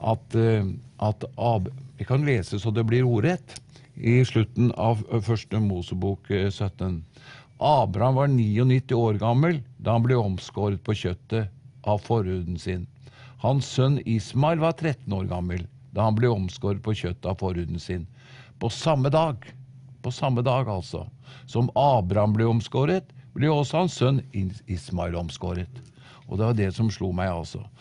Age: 50-69